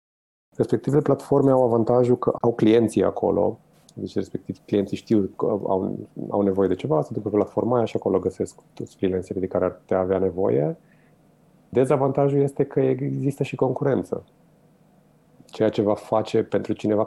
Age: 30-49